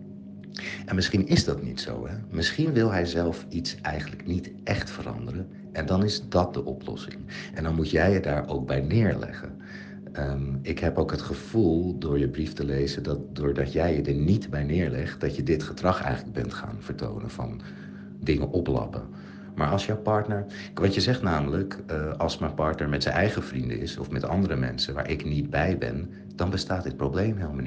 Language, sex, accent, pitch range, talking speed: Dutch, male, Dutch, 70-95 Hz, 195 wpm